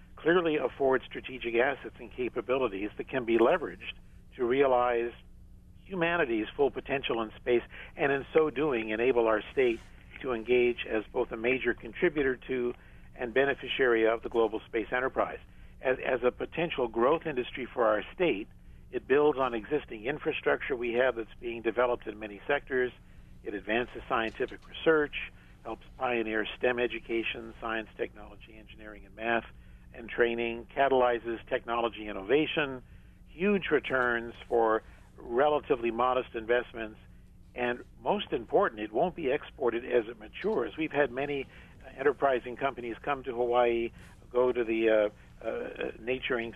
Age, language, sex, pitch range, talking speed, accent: 50-69, English, male, 115-130 Hz, 140 wpm, American